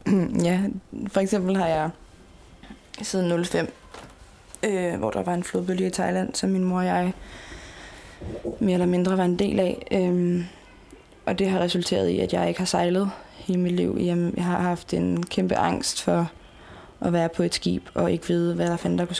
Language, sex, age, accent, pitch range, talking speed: Danish, female, 20-39, native, 165-185 Hz, 195 wpm